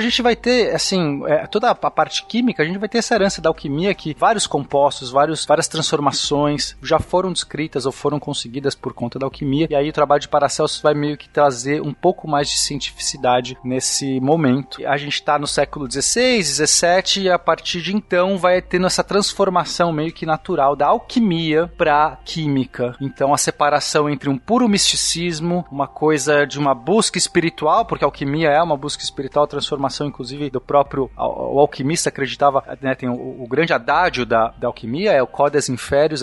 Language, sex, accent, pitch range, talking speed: Portuguese, male, Brazilian, 140-185 Hz, 190 wpm